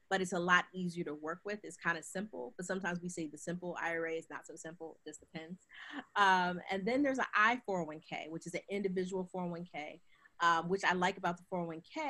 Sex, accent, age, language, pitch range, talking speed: female, American, 30-49, English, 160-185 Hz, 220 wpm